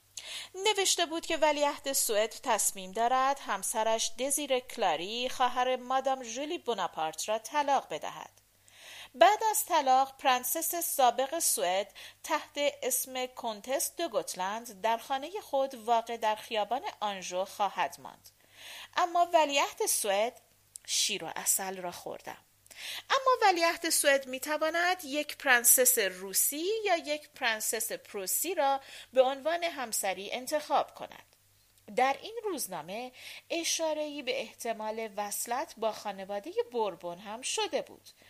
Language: Persian